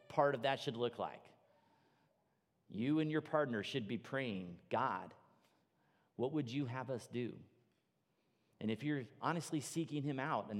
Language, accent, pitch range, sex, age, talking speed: English, American, 105-140 Hz, male, 40-59, 160 wpm